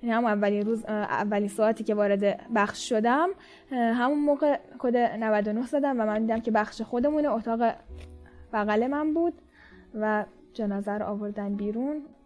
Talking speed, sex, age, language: 140 wpm, female, 10-29, Persian